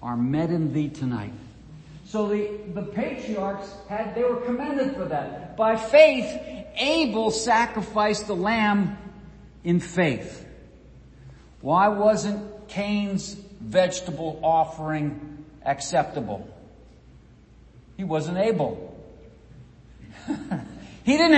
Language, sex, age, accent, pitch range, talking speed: English, male, 50-69, American, 180-245 Hz, 95 wpm